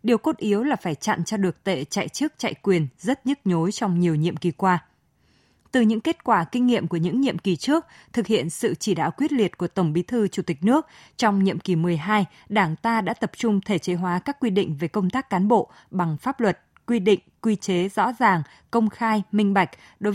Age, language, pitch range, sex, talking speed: 20-39, Vietnamese, 180-230 Hz, female, 240 wpm